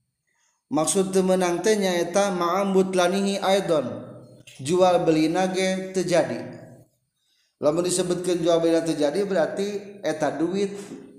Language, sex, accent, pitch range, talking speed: Indonesian, male, native, 135-190 Hz, 90 wpm